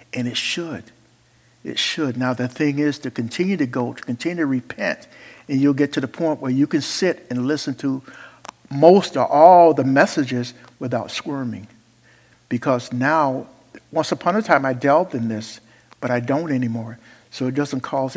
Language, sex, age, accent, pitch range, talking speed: English, male, 60-79, American, 120-140 Hz, 180 wpm